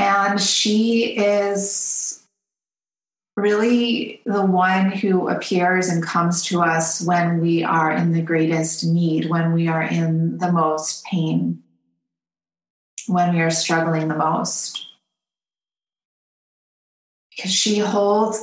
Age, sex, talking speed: 30-49, female, 115 wpm